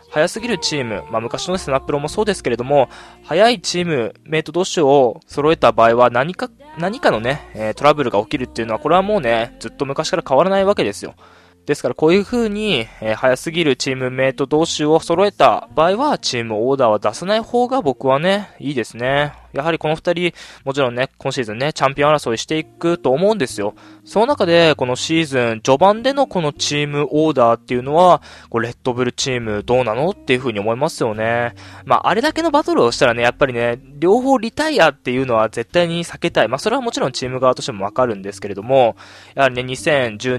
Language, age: Japanese, 20-39